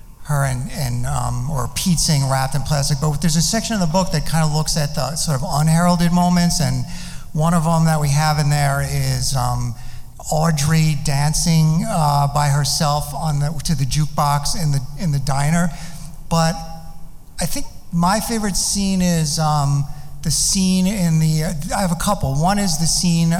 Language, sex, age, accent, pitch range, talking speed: English, male, 50-69, American, 145-165 Hz, 185 wpm